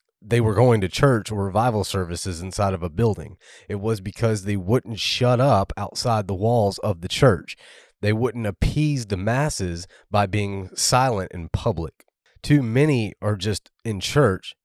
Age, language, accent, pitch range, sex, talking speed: 30-49, English, American, 95-115 Hz, male, 170 wpm